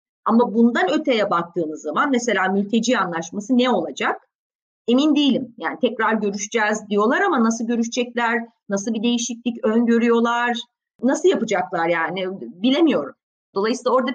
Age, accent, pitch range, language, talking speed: 30-49, native, 205-260 Hz, Turkish, 125 wpm